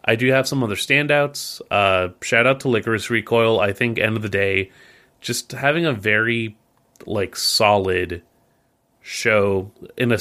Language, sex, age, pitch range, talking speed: English, male, 30-49, 100-125 Hz, 160 wpm